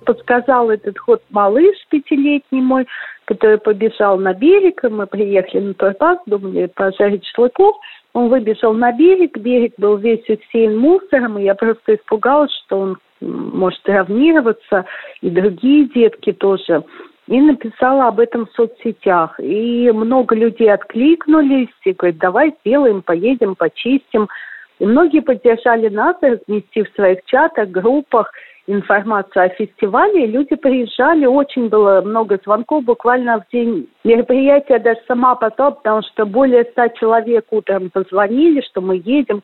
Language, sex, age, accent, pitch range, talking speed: Russian, female, 40-59, native, 205-255 Hz, 140 wpm